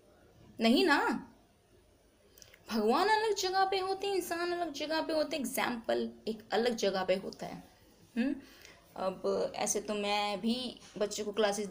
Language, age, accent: Hindi, 20-39, native